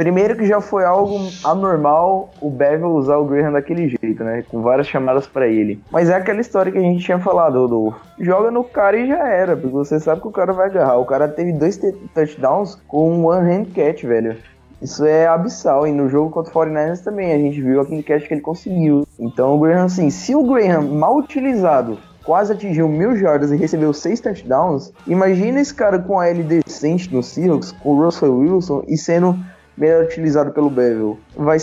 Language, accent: Portuguese, Brazilian